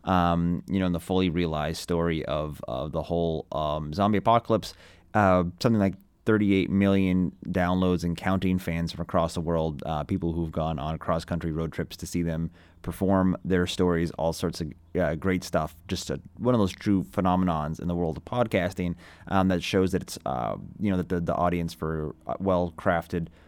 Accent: American